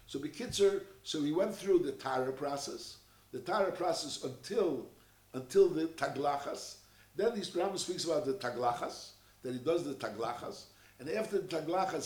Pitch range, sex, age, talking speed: 130-200 Hz, male, 60-79, 160 wpm